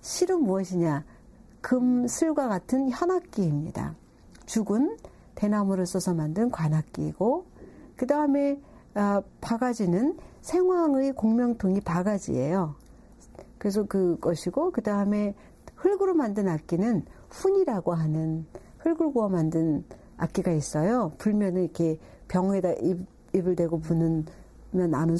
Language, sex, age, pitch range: Korean, female, 60-79, 165-245 Hz